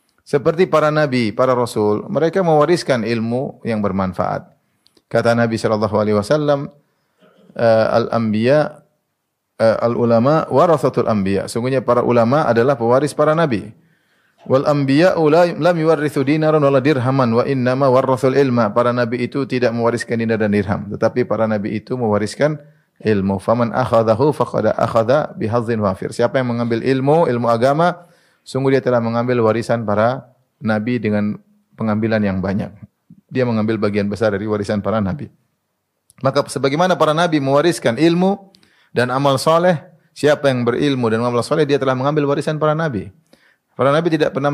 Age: 30-49